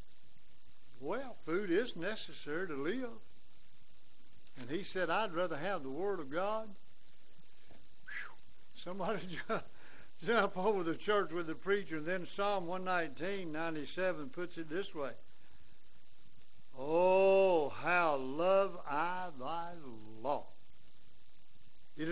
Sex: male